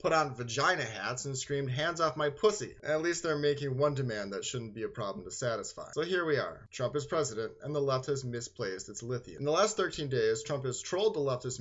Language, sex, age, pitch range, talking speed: English, male, 30-49, 120-150 Hz, 245 wpm